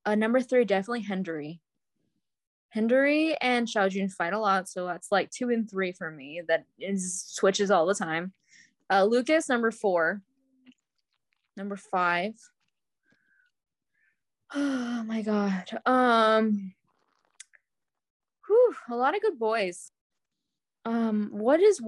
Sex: female